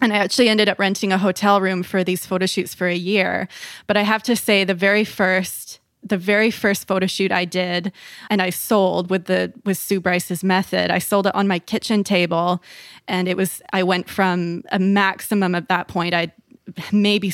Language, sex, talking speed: English, female, 210 wpm